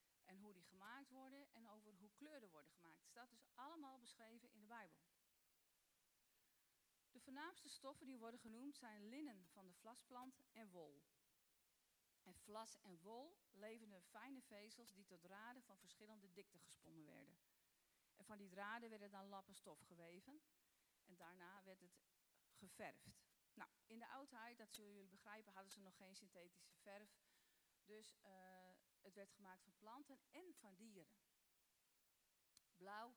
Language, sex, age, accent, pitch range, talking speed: Dutch, female, 40-59, Dutch, 195-240 Hz, 155 wpm